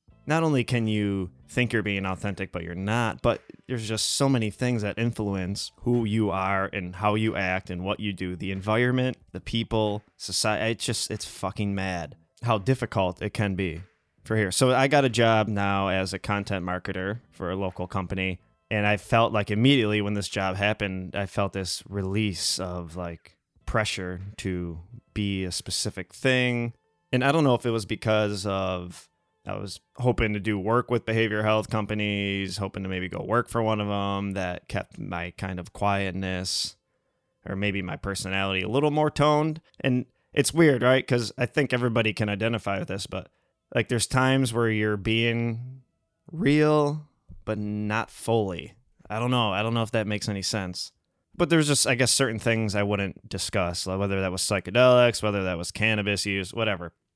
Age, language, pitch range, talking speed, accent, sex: 20-39, English, 95-120 Hz, 185 wpm, American, male